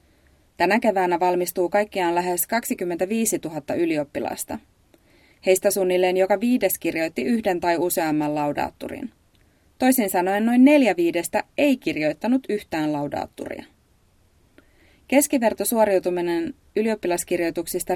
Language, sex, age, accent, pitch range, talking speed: Finnish, female, 30-49, native, 170-220 Hz, 95 wpm